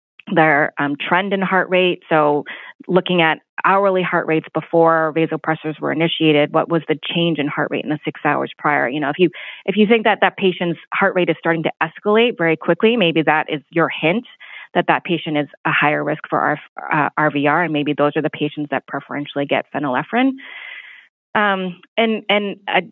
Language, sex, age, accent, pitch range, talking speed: English, female, 20-39, American, 155-185 Hz, 195 wpm